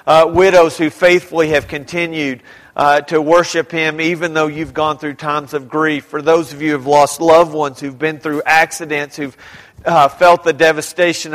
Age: 40-59